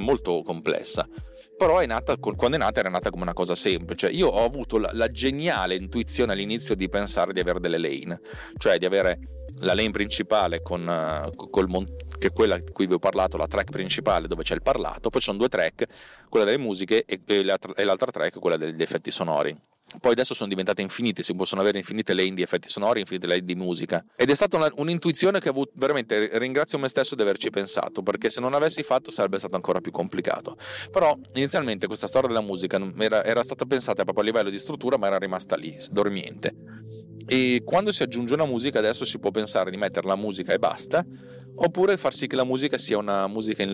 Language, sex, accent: Italian, male, native